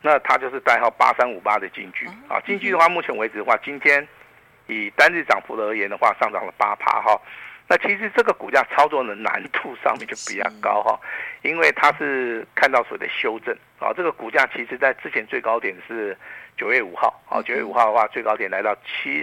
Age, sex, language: 50-69, male, Chinese